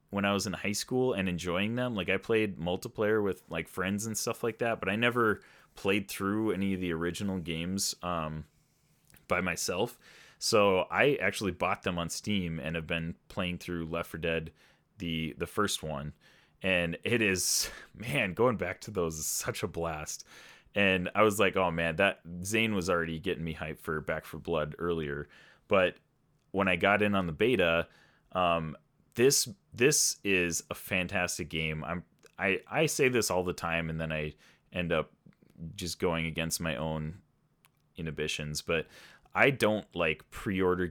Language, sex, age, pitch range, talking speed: English, male, 30-49, 80-100 Hz, 175 wpm